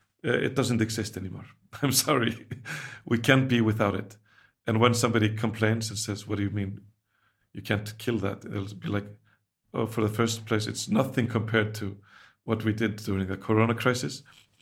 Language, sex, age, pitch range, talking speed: English, male, 40-59, 105-115 Hz, 180 wpm